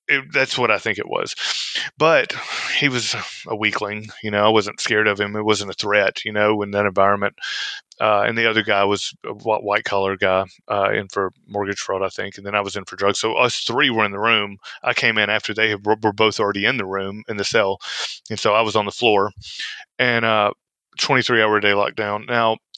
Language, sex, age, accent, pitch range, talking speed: English, male, 30-49, American, 100-110 Hz, 230 wpm